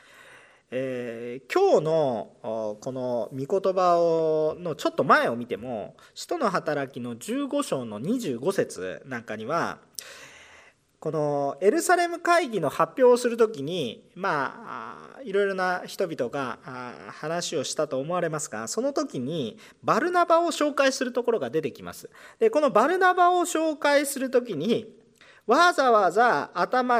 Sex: male